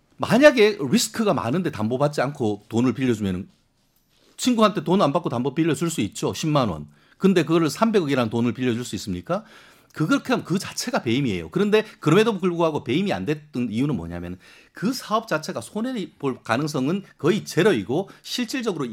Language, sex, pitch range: Korean, male, 115-190 Hz